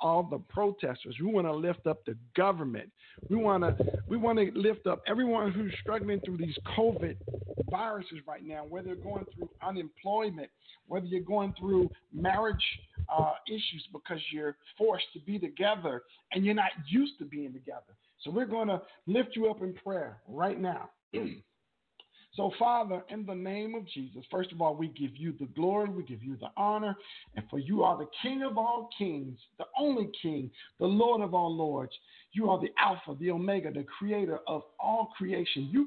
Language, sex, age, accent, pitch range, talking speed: English, male, 50-69, American, 160-220 Hz, 185 wpm